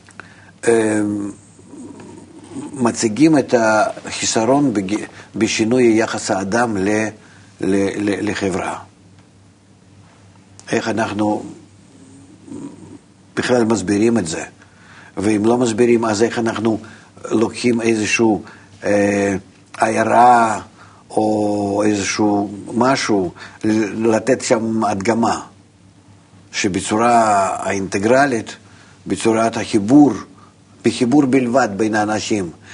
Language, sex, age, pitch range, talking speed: Hebrew, male, 50-69, 100-115 Hz, 70 wpm